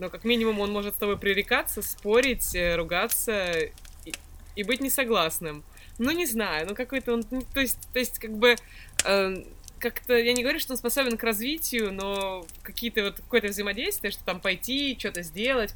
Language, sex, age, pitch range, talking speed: Russian, female, 20-39, 165-220 Hz, 175 wpm